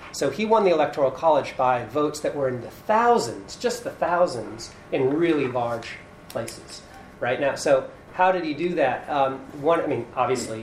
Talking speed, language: 185 wpm, English